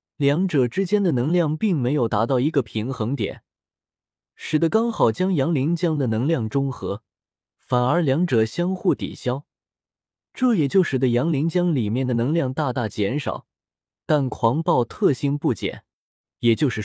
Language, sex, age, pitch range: Chinese, male, 20-39, 115-165 Hz